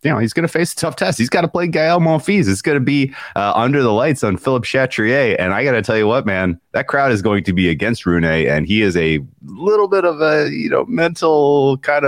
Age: 30-49